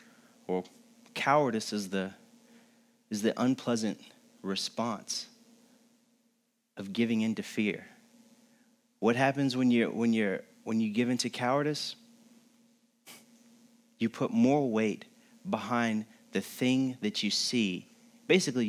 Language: English